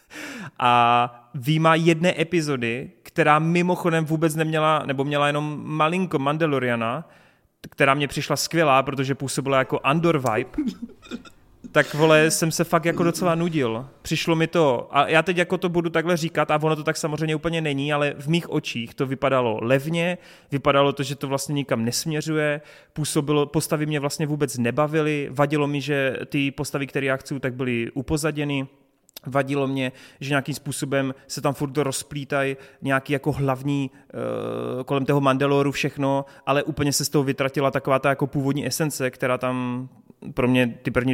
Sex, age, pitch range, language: male, 30-49, 130-155 Hz, Czech